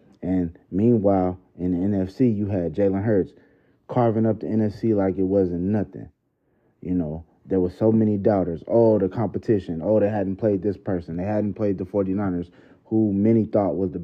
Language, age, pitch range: English, 30-49, 90-110 Hz